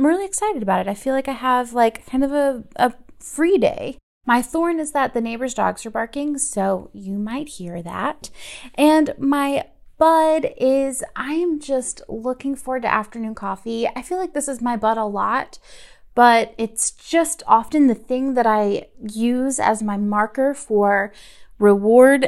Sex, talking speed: female, 175 wpm